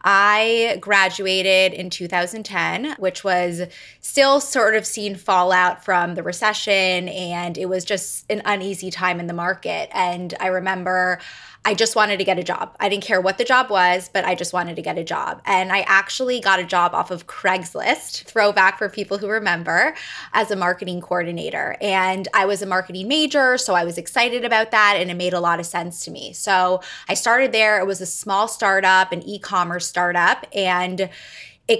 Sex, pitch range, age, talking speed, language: female, 180-230 Hz, 20-39, 195 wpm, English